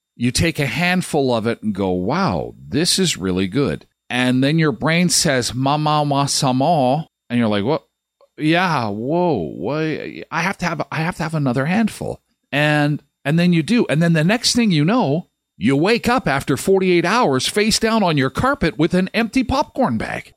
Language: English